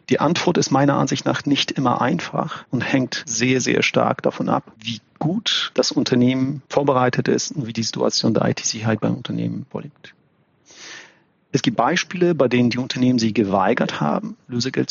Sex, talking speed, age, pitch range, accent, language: male, 170 wpm, 40-59, 115-150 Hz, German, German